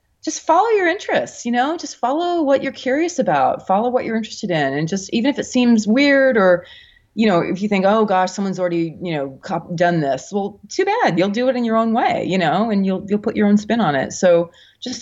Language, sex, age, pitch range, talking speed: English, female, 30-49, 160-220 Hz, 245 wpm